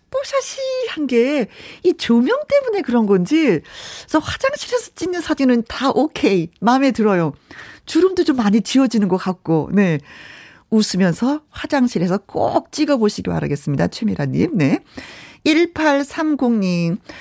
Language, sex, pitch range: Korean, female, 175-265 Hz